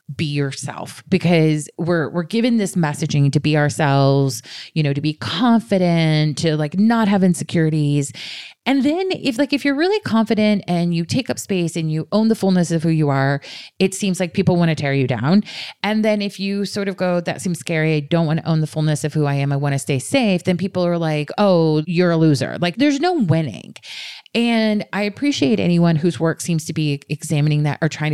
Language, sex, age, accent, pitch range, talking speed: English, female, 30-49, American, 145-185 Hz, 220 wpm